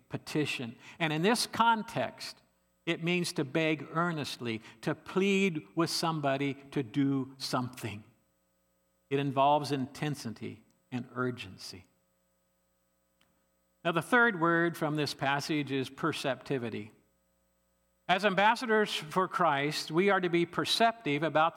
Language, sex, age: English, male, 50-69